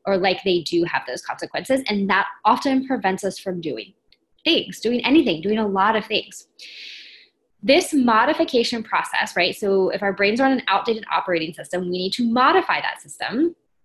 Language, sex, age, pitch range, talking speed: English, female, 20-39, 195-265 Hz, 180 wpm